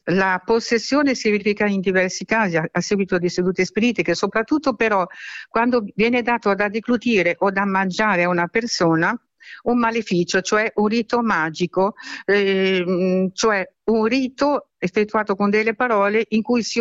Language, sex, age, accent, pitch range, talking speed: Italian, female, 60-79, native, 185-230 Hz, 155 wpm